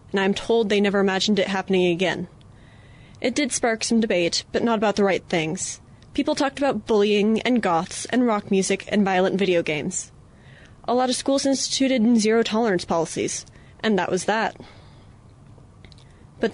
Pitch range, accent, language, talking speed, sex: 185-240 Hz, American, English, 165 wpm, female